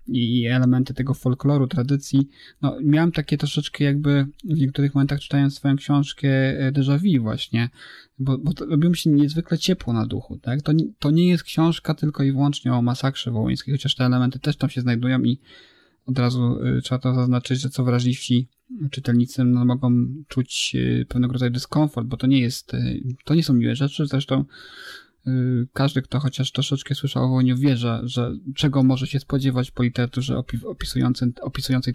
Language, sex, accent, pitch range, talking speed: Polish, male, native, 125-145 Hz, 170 wpm